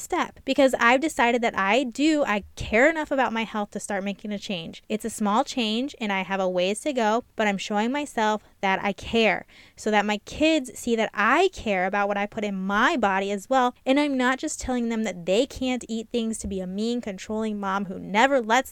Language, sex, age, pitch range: English, female, 20-39, 210-270 Hz